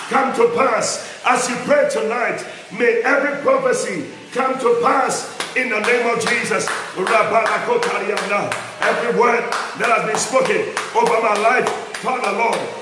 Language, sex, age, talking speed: English, male, 50-69, 135 wpm